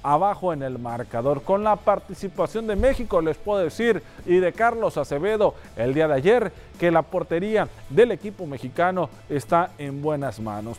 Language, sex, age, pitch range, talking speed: Spanish, male, 40-59, 155-205 Hz, 165 wpm